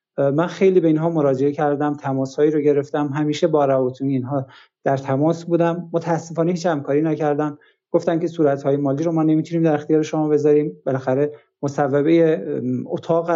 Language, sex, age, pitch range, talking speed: Persian, male, 50-69, 150-175 Hz, 155 wpm